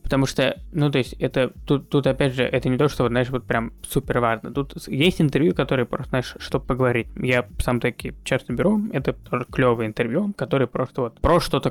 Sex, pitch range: male, 125-155 Hz